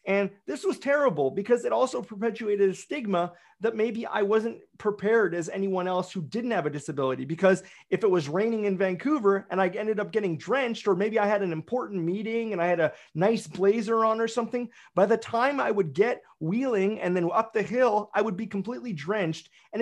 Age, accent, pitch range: 30-49, American, 185-235 Hz